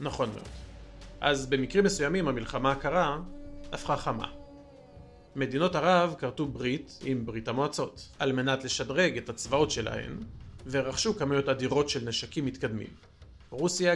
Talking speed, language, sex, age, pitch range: 125 wpm, Hebrew, male, 40-59, 120-145 Hz